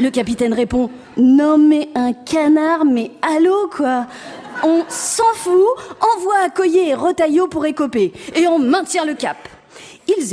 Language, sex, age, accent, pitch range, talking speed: French, female, 40-59, French, 210-315 Hz, 150 wpm